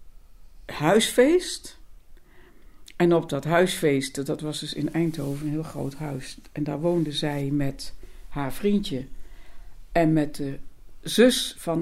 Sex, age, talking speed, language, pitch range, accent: female, 60-79, 130 wpm, Dutch, 140-205 Hz, Dutch